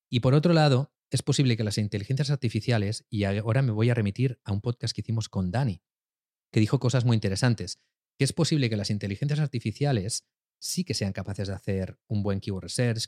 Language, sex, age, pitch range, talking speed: Spanish, male, 30-49, 105-145 Hz, 205 wpm